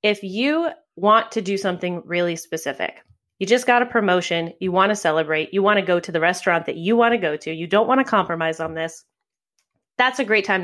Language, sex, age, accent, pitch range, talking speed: English, female, 20-39, American, 175-230 Hz, 210 wpm